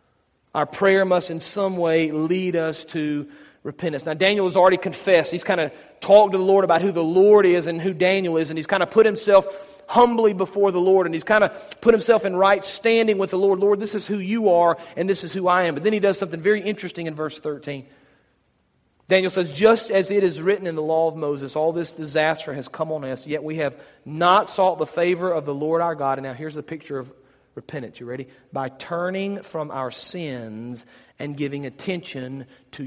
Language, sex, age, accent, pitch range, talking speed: English, male, 40-59, American, 150-195 Hz, 225 wpm